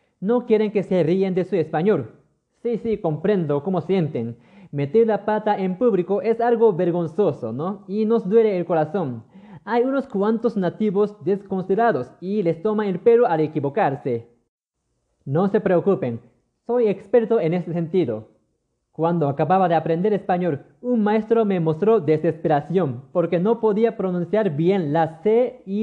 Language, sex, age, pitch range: Japanese, male, 20-39, 155-215 Hz